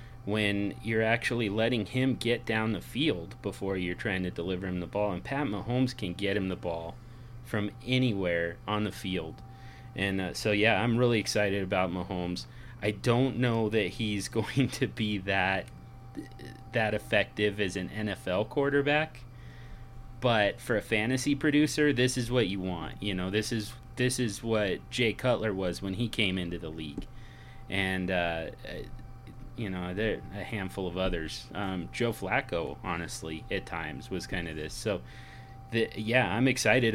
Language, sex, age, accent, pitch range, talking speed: English, male, 30-49, American, 95-120 Hz, 170 wpm